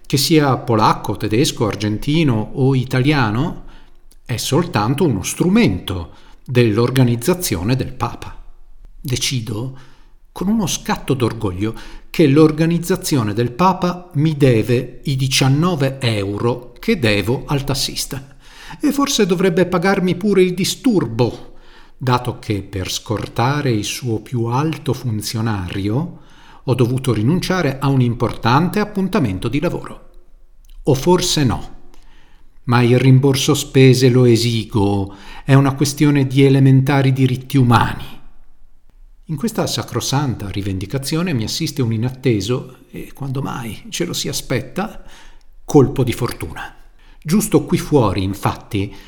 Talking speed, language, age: 115 wpm, Italian, 40-59